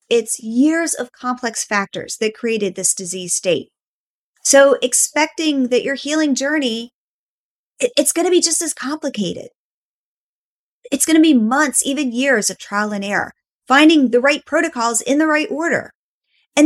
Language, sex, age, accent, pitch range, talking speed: English, female, 30-49, American, 225-290 Hz, 155 wpm